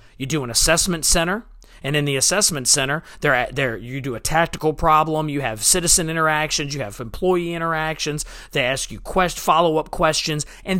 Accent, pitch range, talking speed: American, 120-180 Hz, 185 wpm